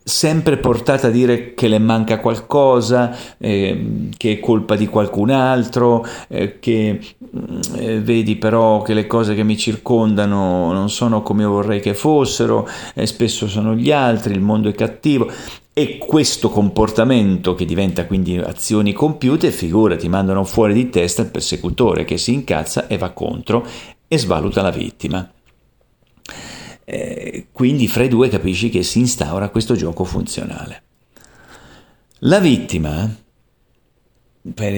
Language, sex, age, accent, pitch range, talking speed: Italian, male, 40-59, native, 100-125 Hz, 140 wpm